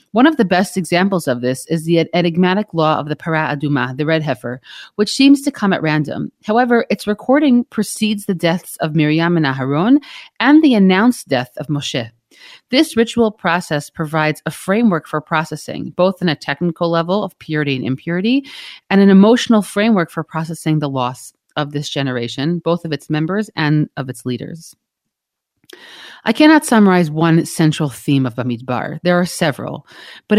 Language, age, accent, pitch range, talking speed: English, 40-59, American, 150-205 Hz, 170 wpm